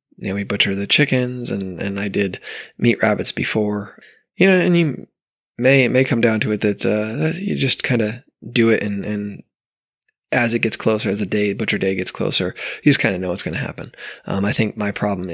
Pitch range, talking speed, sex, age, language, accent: 100-125 Hz, 230 wpm, male, 20-39, English, American